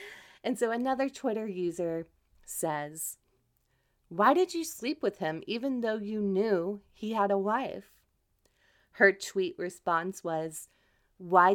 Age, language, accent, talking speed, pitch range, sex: 30-49, English, American, 130 wpm, 165-225 Hz, female